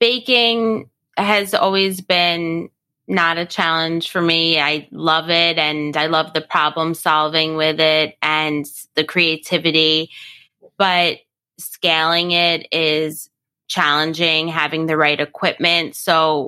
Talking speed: 120 wpm